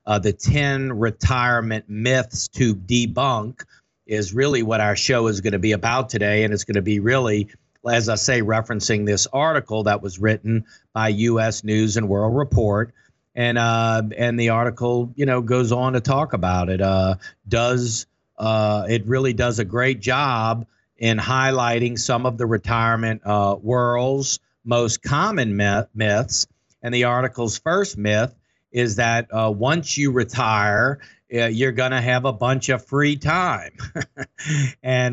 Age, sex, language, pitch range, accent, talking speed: 50-69, male, English, 110-130 Hz, American, 160 wpm